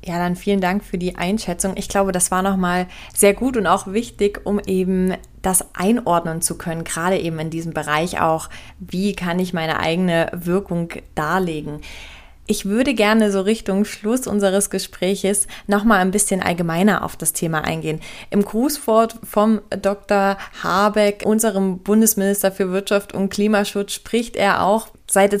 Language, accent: German, German